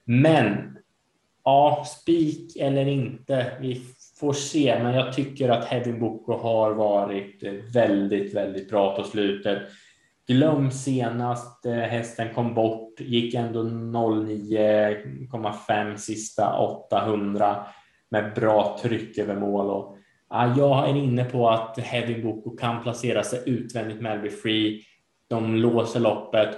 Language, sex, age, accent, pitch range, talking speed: Swedish, male, 20-39, Norwegian, 105-120 Hz, 120 wpm